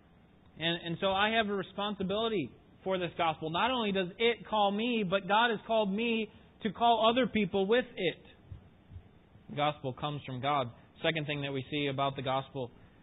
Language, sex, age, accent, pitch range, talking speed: English, male, 30-49, American, 130-190 Hz, 185 wpm